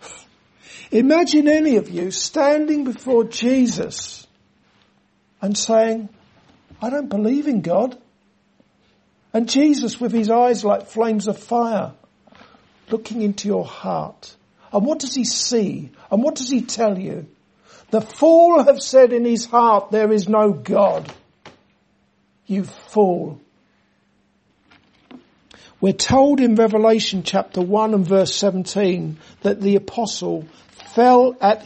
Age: 60-79